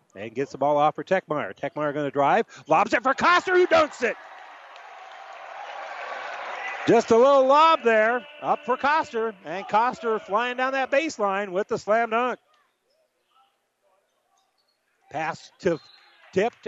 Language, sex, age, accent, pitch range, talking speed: English, male, 40-59, American, 140-215 Hz, 140 wpm